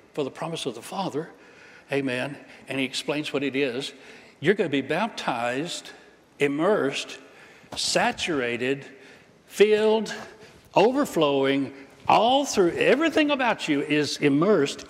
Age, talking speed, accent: 60-79, 115 wpm, American